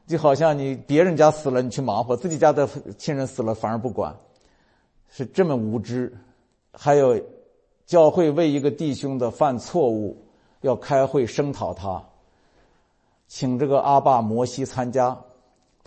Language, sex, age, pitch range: Chinese, male, 50-69, 115-150 Hz